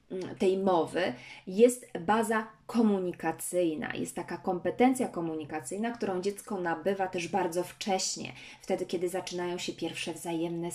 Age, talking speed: 20-39, 115 wpm